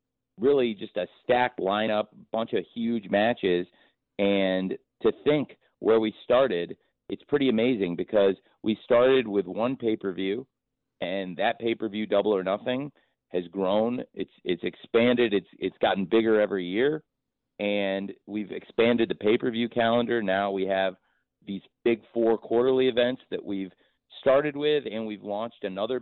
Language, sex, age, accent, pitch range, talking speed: English, male, 40-59, American, 95-115 Hz, 150 wpm